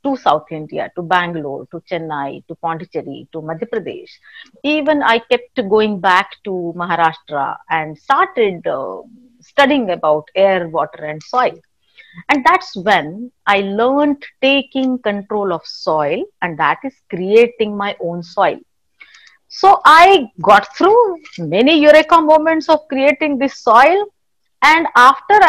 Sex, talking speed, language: female, 135 wpm, English